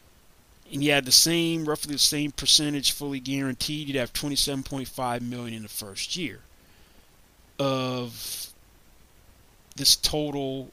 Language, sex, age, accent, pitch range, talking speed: English, male, 30-49, American, 120-145 Hz, 125 wpm